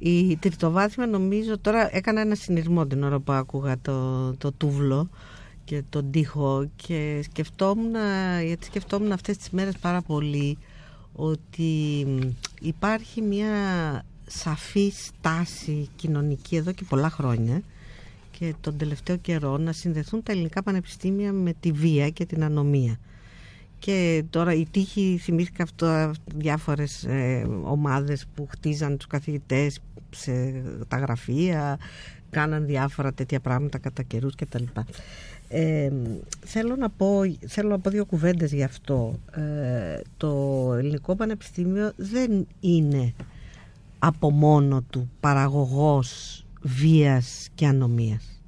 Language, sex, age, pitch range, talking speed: Greek, female, 50-69, 135-180 Hz, 120 wpm